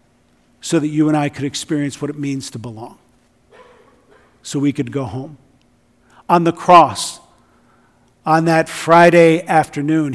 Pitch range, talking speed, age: 135-175 Hz, 140 wpm, 50-69